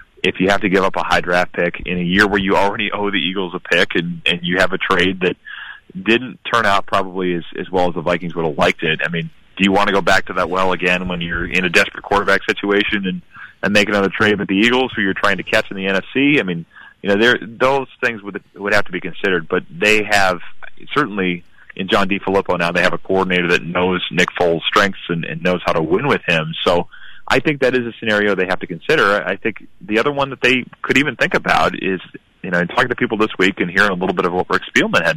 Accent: American